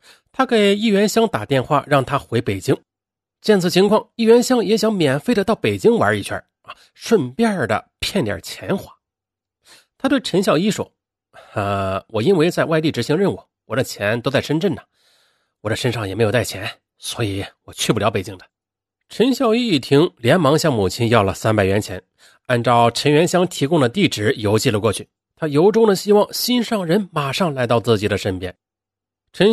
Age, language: 30-49, Chinese